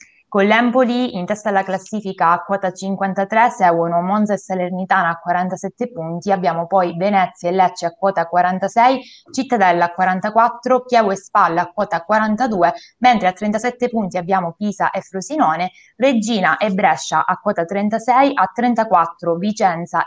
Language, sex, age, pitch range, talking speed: Italian, female, 20-39, 180-235 Hz, 150 wpm